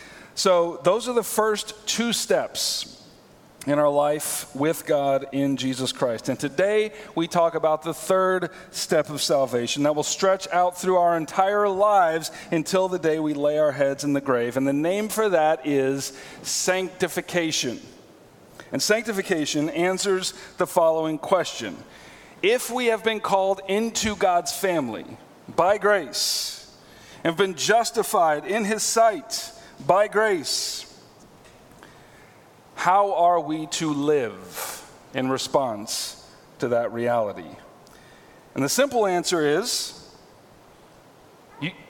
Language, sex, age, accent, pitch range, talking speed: English, male, 40-59, American, 150-205 Hz, 130 wpm